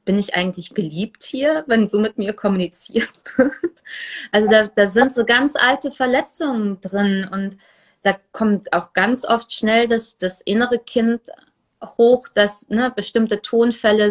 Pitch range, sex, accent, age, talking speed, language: 195-240 Hz, female, German, 30-49, 155 wpm, German